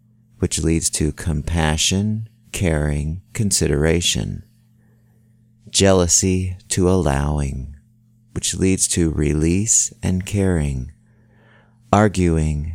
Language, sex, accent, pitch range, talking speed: English, male, American, 80-110 Hz, 75 wpm